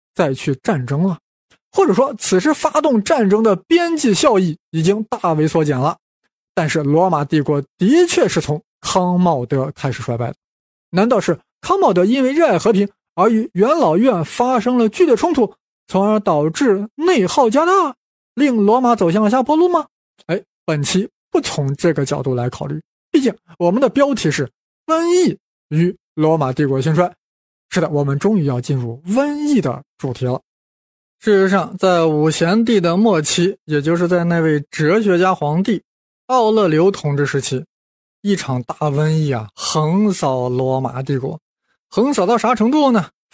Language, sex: Chinese, male